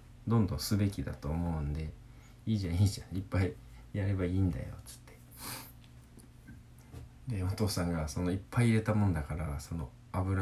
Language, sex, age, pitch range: Japanese, male, 20-39, 80-115 Hz